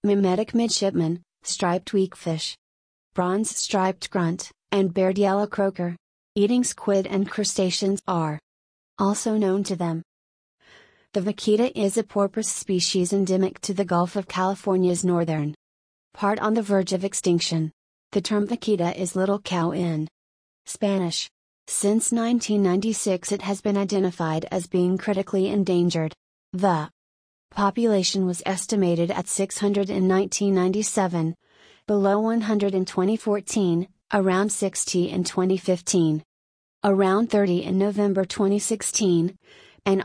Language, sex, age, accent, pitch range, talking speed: English, female, 30-49, American, 175-205 Hz, 120 wpm